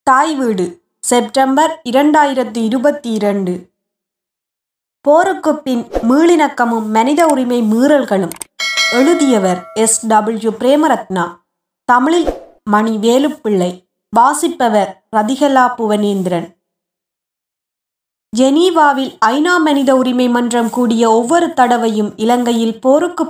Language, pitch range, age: Tamil, 210-275 Hz, 20-39